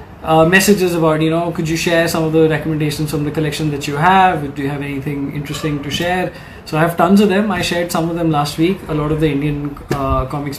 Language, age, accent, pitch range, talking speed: English, 20-39, Indian, 150-170 Hz, 255 wpm